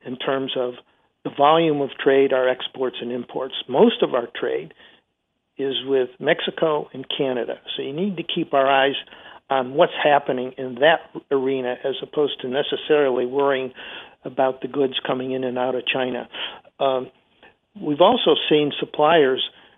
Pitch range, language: 130-165 Hz, English